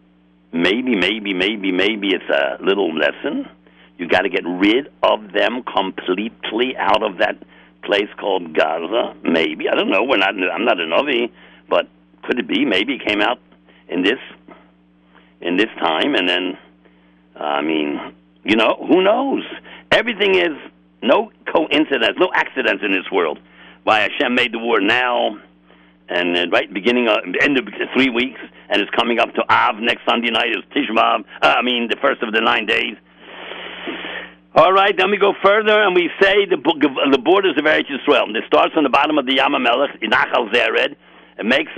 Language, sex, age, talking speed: English, male, 60-79, 175 wpm